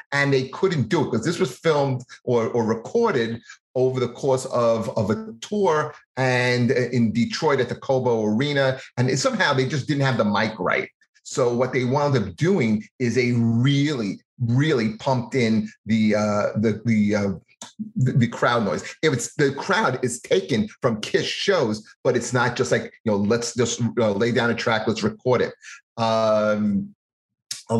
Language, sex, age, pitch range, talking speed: English, male, 30-49, 110-130 Hz, 185 wpm